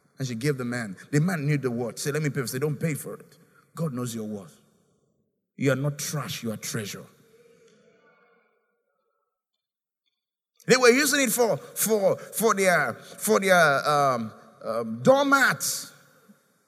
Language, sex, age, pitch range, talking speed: English, male, 30-49, 155-230 Hz, 160 wpm